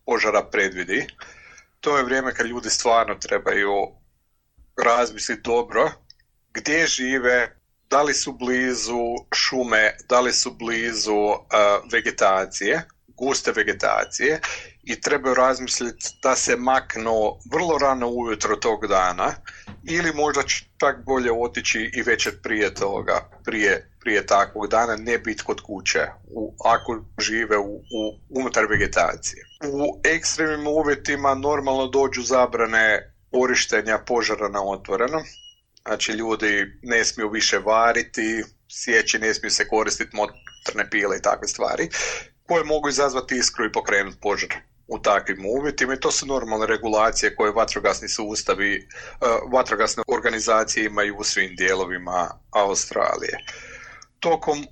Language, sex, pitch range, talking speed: Croatian, male, 110-140 Hz, 120 wpm